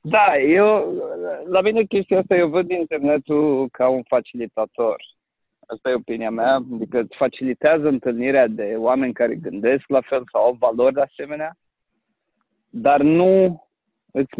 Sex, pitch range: male, 125-165 Hz